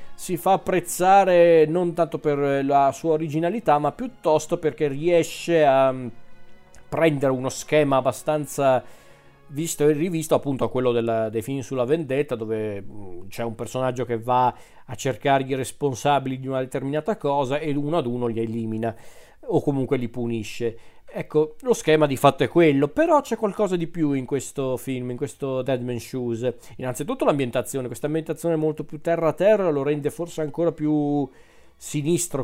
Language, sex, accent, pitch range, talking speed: Italian, male, native, 125-155 Hz, 165 wpm